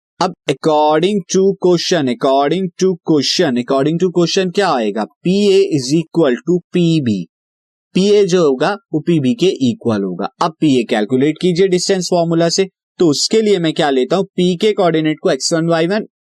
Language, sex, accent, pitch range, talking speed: Hindi, male, native, 130-185 Hz, 170 wpm